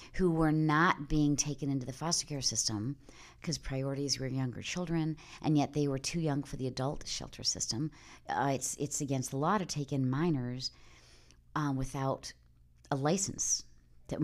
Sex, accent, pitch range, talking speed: female, American, 125-160 Hz, 175 wpm